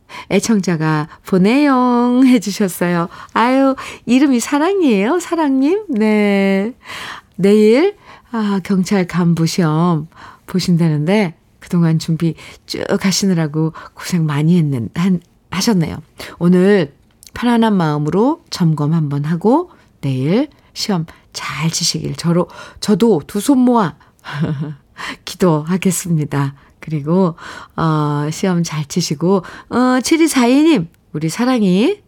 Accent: native